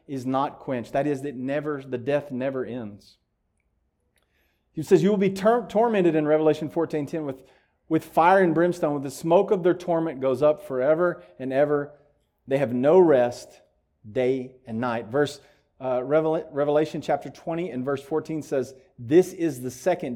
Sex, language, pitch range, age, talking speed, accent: male, English, 125-170 Hz, 40-59, 175 wpm, American